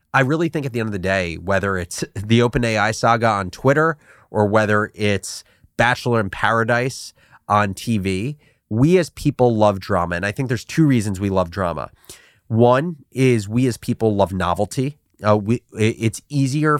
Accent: American